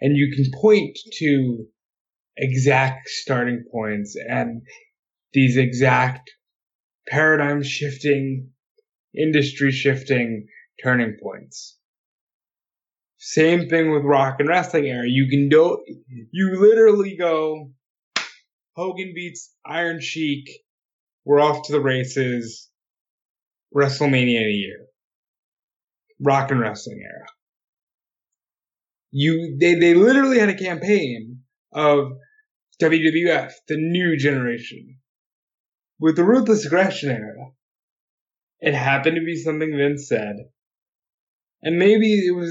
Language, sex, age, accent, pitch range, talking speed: English, male, 20-39, American, 130-165 Hz, 105 wpm